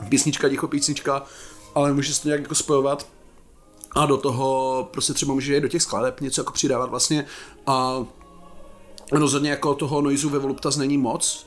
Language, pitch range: Czech, 130-145 Hz